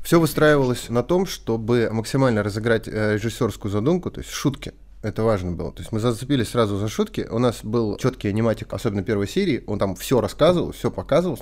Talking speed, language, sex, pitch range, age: 190 wpm, Russian, male, 105-125 Hz, 20-39